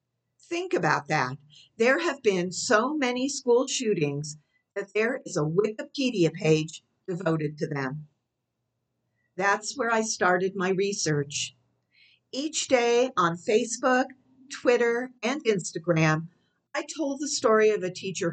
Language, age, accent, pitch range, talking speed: English, 50-69, American, 160-240 Hz, 130 wpm